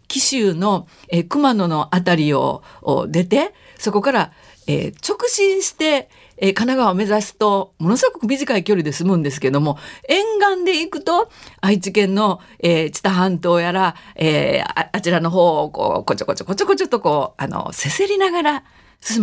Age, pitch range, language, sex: 50-69, 175-270 Hz, Japanese, female